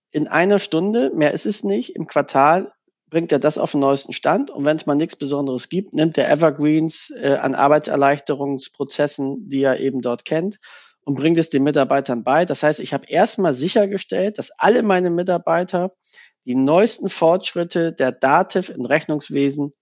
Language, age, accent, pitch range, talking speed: German, 40-59, German, 140-175 Hz, 175 wpm